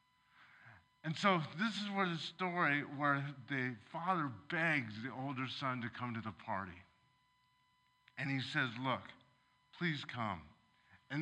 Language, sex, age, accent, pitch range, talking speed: English, male, 50-69, American, 135-185 Hz, 140 wpm